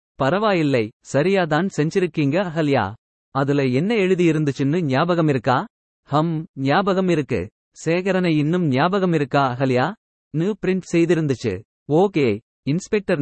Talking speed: 100 wpm